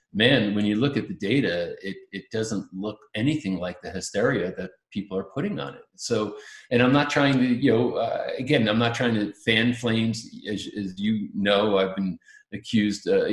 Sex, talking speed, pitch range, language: male, 205 wpm, 100-130 Hz, English